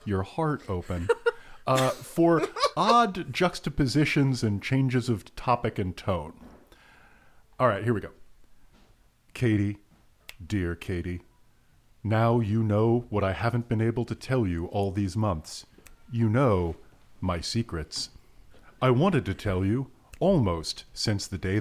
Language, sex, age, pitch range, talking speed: English, male, 40-59, 90-120 Hz, 135 wpm